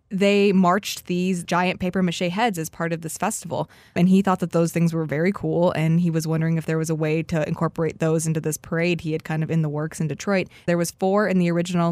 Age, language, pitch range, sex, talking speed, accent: 20-39, English, 165-185 Hz, female, 250 wpm, American